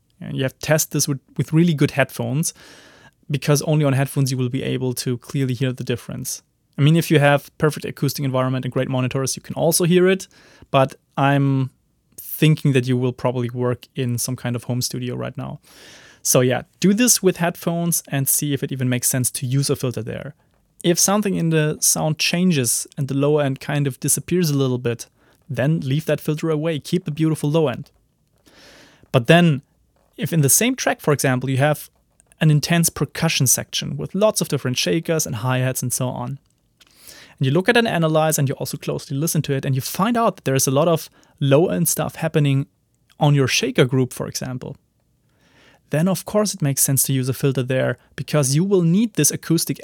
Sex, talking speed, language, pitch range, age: male, 210 wpm, English, 130-165 Hz, 30-49